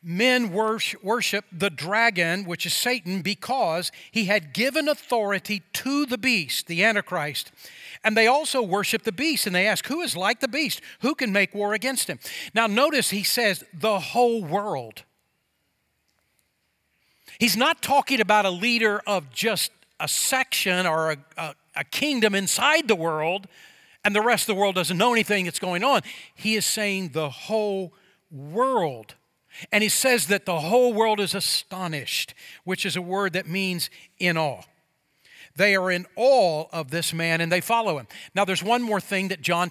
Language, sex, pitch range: English, male, 180-225 Hz